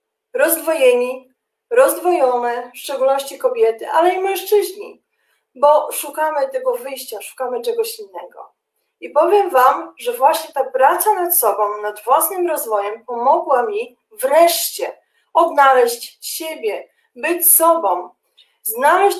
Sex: female